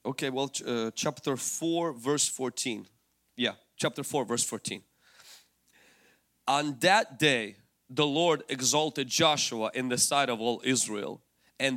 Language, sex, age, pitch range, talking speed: English, male, 30-49, 125-155 Hz, 135 wpm